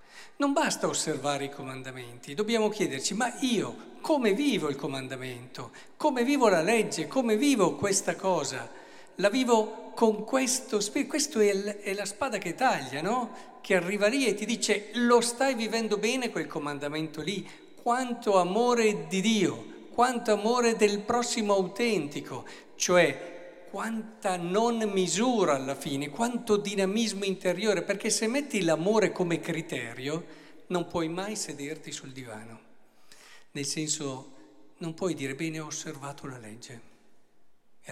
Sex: male